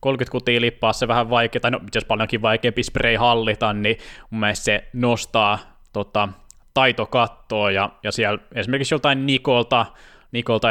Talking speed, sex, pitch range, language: 145 wpm, male, 105-130 Hz, Finnish